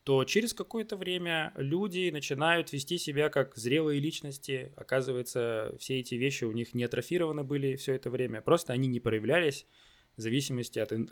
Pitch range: 120-145 Hz